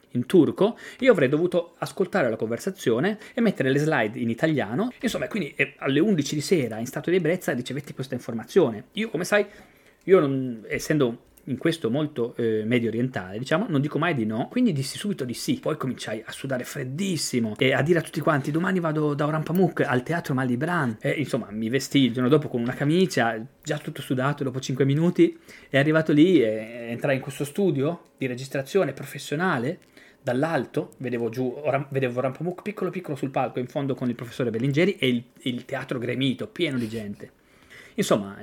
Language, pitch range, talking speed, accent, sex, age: Italian, 120-155 Hz, 190 wpm, native, male, 30-49